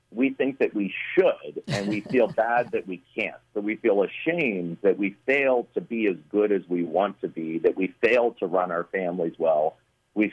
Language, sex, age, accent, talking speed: English, male, 50-69, American, 215 wpm